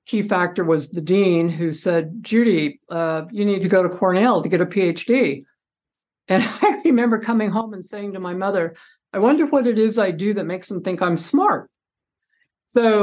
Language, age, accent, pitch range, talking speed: Hindi, 50-69, American, 180-220 Hz, 200 wpm